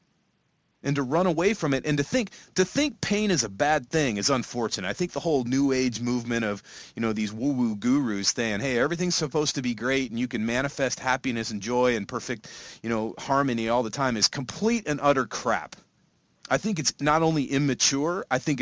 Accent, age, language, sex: American, 30-49, English, male